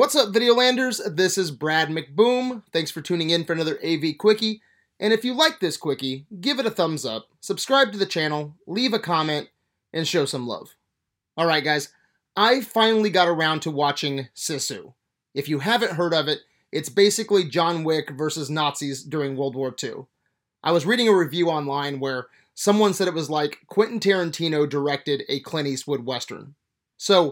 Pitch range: 150-210 Hz